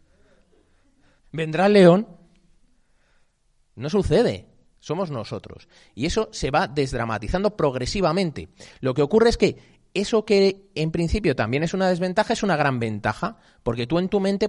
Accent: Spanish